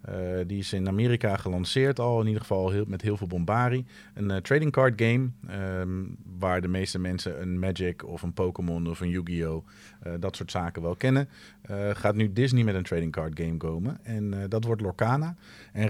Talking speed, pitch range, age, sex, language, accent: 195 wpm, 95-110 Hz, 40-59, male, Dutch, Dutch